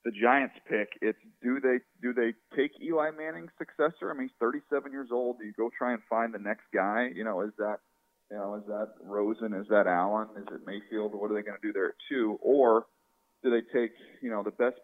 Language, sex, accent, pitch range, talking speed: English, male, American, 100-125 Hz, 235 wpm